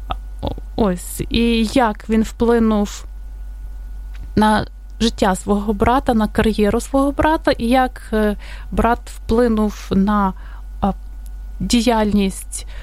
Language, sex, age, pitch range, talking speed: English, female, 20-39, 195-240 Hz, 90 wpm